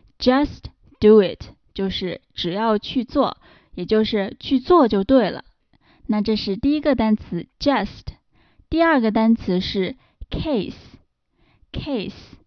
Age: 20-39